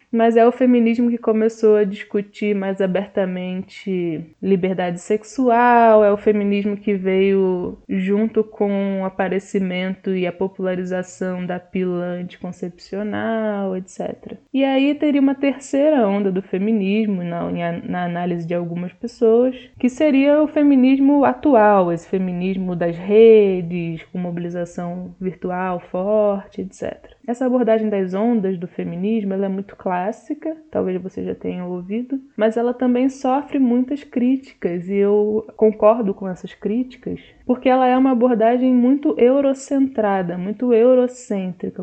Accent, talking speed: Brazilian, 130 wpm